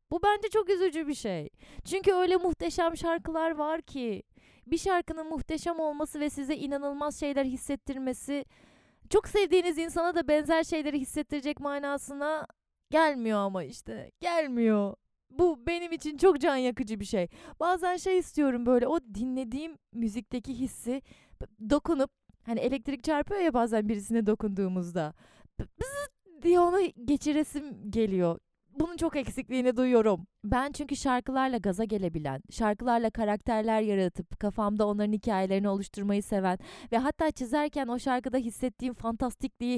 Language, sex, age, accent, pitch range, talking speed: Turkish, female, 20-39, native, 210-310 Hz, 130 wpm